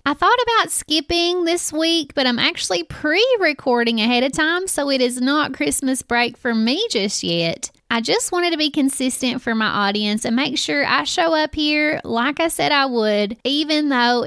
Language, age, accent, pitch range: English, 30-49, American, 230-310 Hz